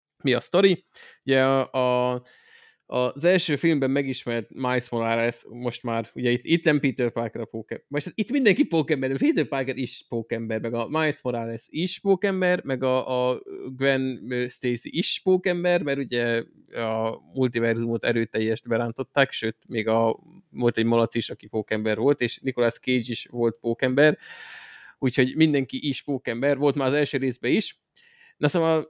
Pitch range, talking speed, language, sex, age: 115-145 Hz, 160 wpm, Hungarian, male, 20-39